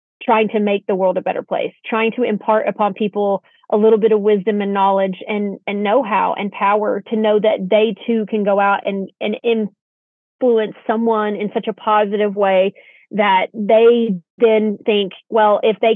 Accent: American